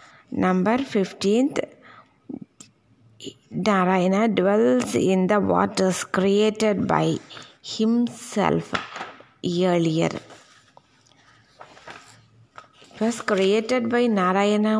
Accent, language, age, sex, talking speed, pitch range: native, Tamil, 20-39, female, 65 wpm, 185-230 Hz